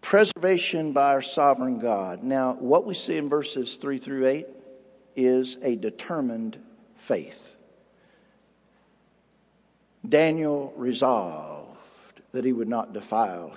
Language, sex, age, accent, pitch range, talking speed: English, male, 60-79, American, 140-215 Hz, 110 wpm